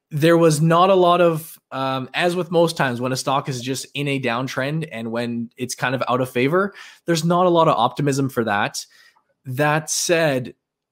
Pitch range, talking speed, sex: 120-145 Hz, 205 wpm, male